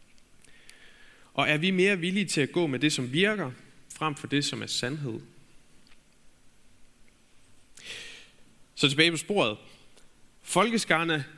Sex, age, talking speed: male, 30-49, 120 wpm